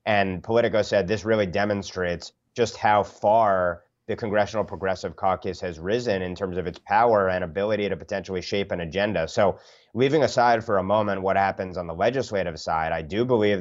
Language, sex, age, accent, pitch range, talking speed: English, male, 30-49, American, 90-110 Hz, 185 wpm